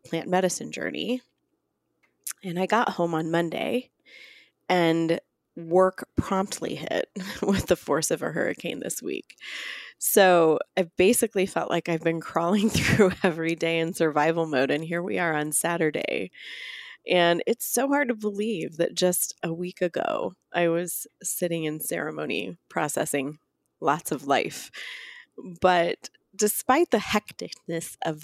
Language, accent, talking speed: English, American, 140 wpm